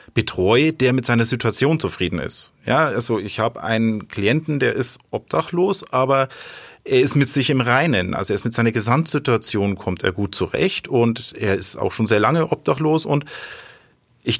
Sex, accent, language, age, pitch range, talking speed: male, German, German, 40-59, 100-130 Hz, 175 wpm